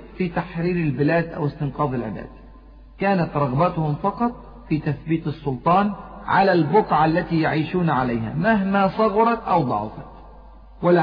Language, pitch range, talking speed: Arabic, 145-190 Hz, 120 wpm